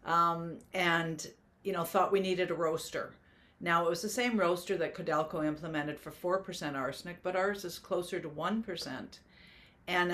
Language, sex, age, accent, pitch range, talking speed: English, female, 50-69, American, 155-185 Hz, 165 wpm